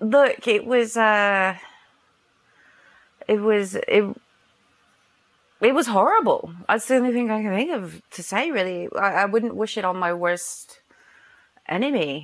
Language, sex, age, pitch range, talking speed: English, female, 30-49, 145-210 Hz, 145 wpm